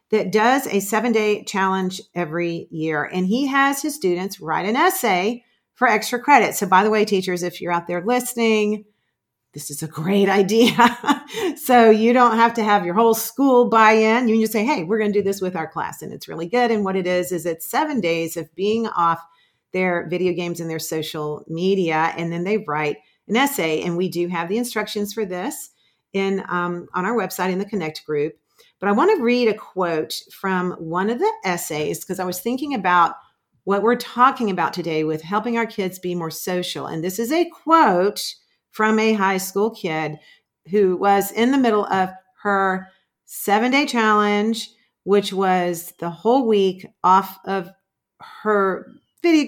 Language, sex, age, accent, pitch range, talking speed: English, female, 40-59, American, 170-220 Hz, 190 wpm